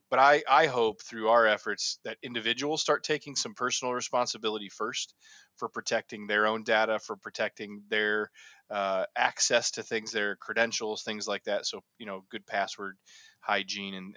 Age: 20-39